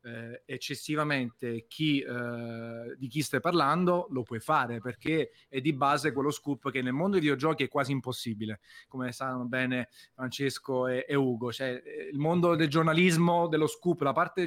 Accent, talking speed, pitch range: native, 160 wpm, 125-150 Hz